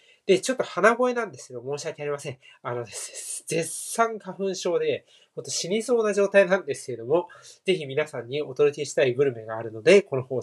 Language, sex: Japanese, male